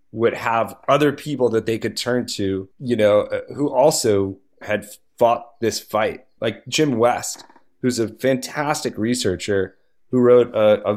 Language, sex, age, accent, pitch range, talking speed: English, male, 30-49, American, 110-140 Hz, 160 wpm